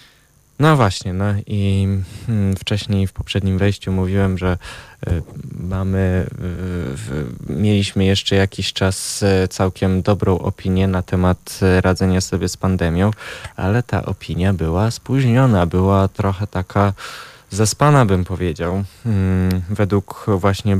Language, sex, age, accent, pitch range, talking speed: Polish, male, 20-39, native, 90-105 Hz, 105 wpm